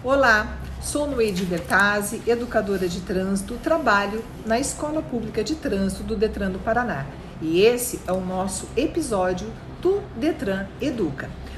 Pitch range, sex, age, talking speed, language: 195-280 Hz, female, 50-69, 135 wpm, Portuguese